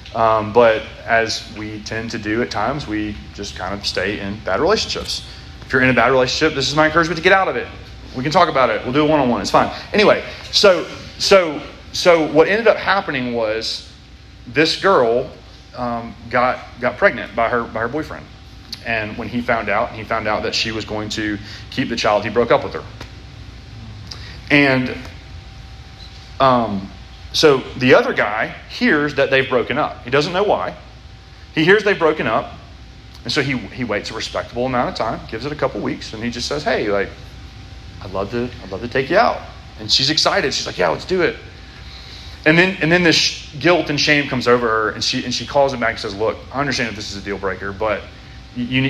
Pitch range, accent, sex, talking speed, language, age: 100-130 Hz, American, male, 215 wpm, English, 30-49